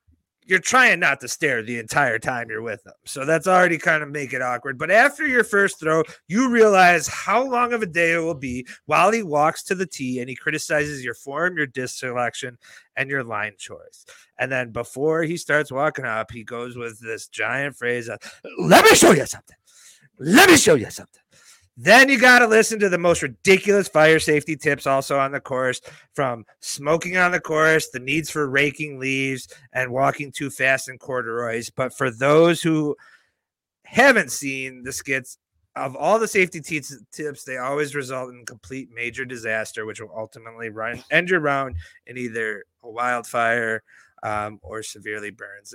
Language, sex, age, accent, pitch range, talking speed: English, male, 30-49, American, 125-165 Hz, 190 wpm